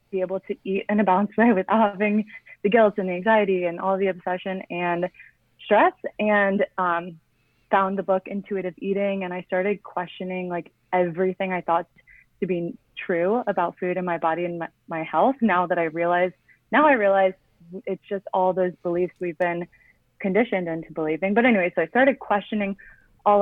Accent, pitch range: American, 180-205 Hz